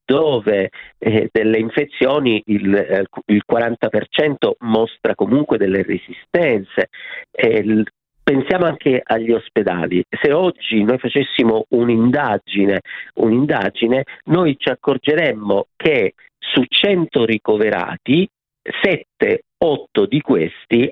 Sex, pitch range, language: male, 115-165 Hz, Italian